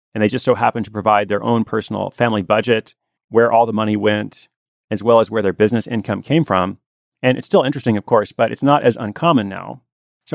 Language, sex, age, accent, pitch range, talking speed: English, male, 30-49, American, 105-130 Hz, 225 wpm